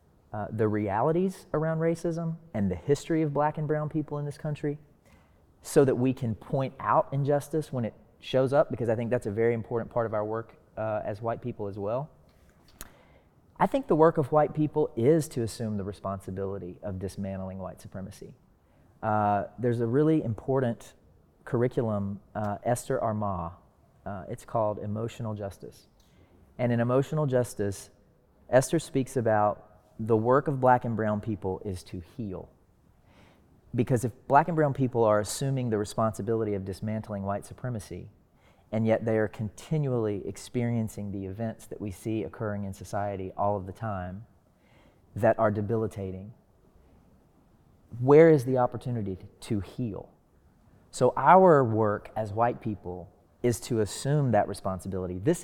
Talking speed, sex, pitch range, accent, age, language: 155 wpm, male, 100-130 Hz, American, 30-49, English